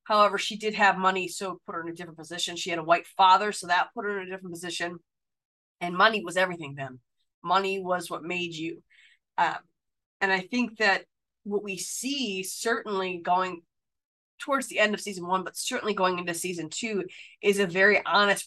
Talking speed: 200 wpm